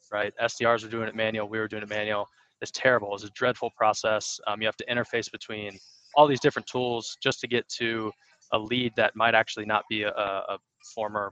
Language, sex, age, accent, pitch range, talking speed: English, male, 20-39, American, 105-125 Hz, 215 wpm